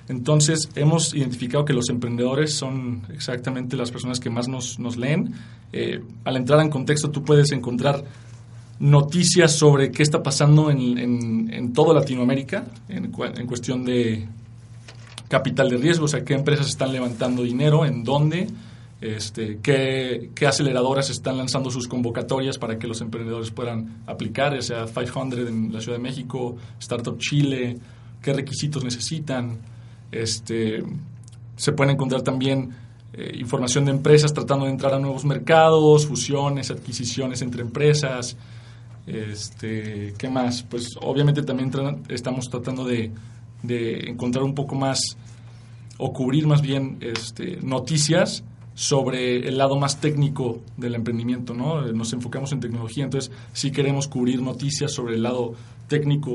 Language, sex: Spanish, male